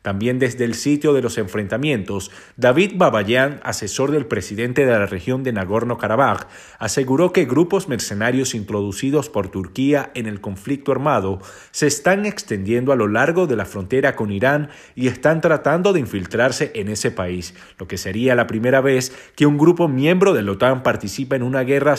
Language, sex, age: Spanish, male, 40-59